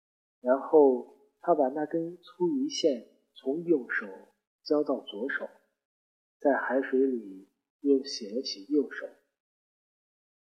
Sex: male